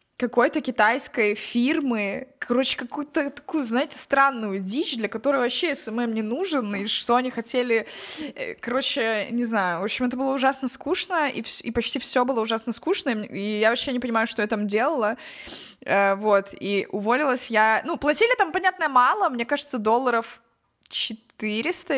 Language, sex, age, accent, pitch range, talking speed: Russian, female, 20-39, native, 205-265 Hz, 160 wpm